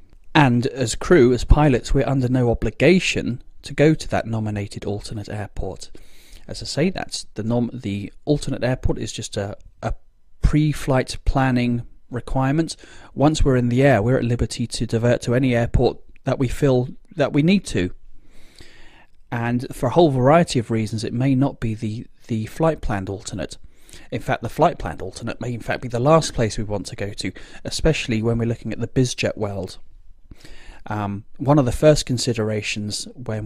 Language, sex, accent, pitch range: English, male, British, 110-135 Hz